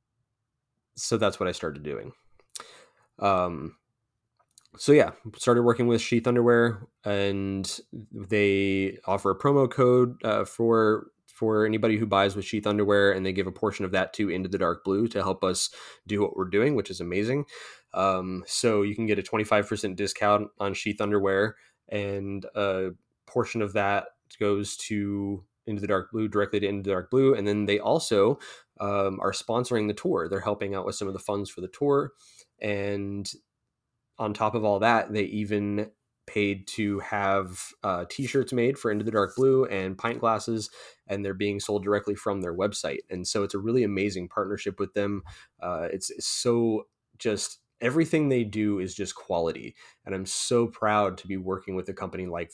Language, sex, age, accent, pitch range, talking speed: English, male, 20-39, American, 100-115 Hz, 185 wpm